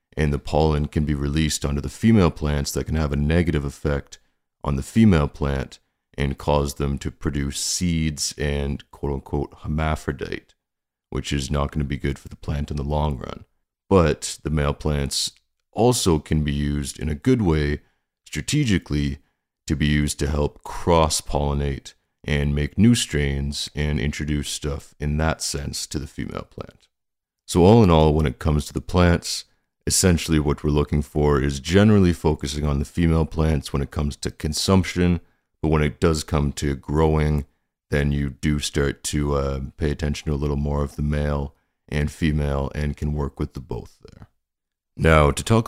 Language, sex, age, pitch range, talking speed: English, male, 40-59, 70-80 Hz, 180 wpm